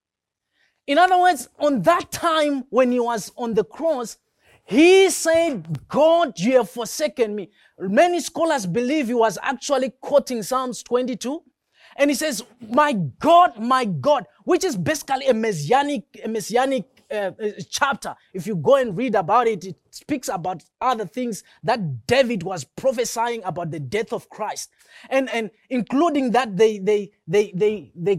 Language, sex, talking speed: English, male, 160 wpm